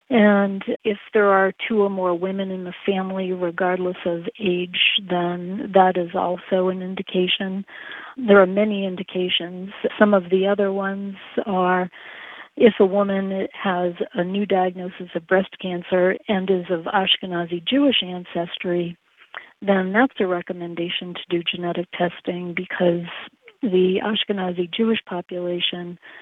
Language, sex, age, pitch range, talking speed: English, female, 40-59, 175-200 Hz, 135 wpm